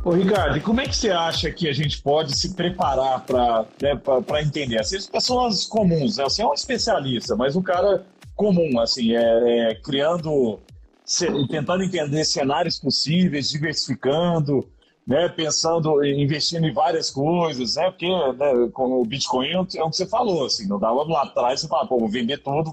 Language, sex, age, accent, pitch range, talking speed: Portuguese, male, 40-59, Brazilian, 130-180 Hz, 185 wpm